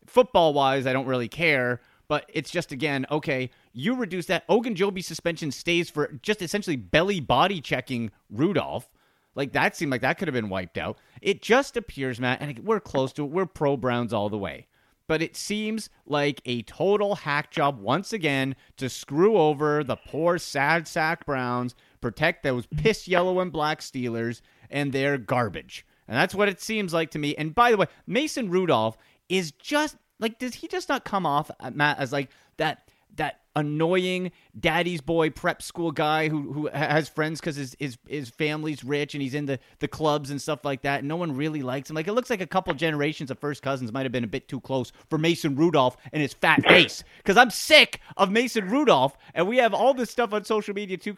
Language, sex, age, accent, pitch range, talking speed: English, male, 30-49, American, 135-175 Hz, 205 wpm